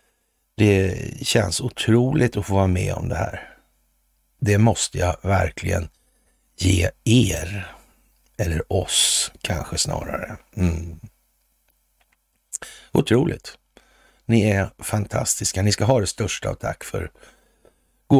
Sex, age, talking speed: male, 60-79, 110 wpm